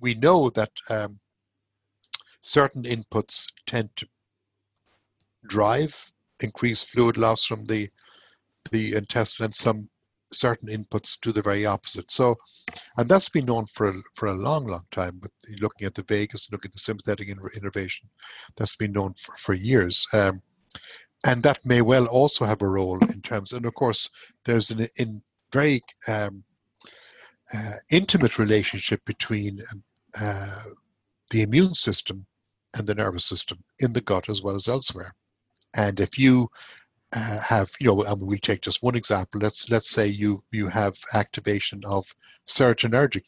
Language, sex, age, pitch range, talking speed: English, male, 60-79, 100-120 Hz, 155 wpm